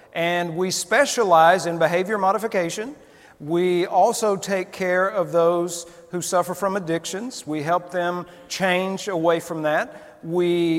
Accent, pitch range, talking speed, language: American, 165-210 Hz, 135 wpm, English